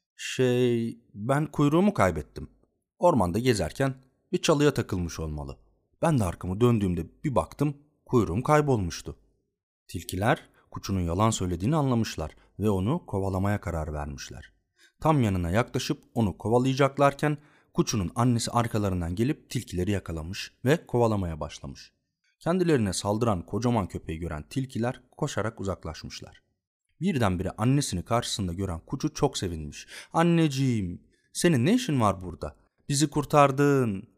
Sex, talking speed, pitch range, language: male, 115 wpm, 95-140 Hz, Turkish